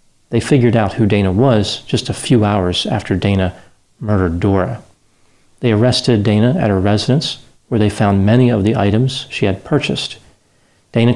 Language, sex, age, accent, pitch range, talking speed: English, male, 40-59, American, 100-120 Hz, 165 wpm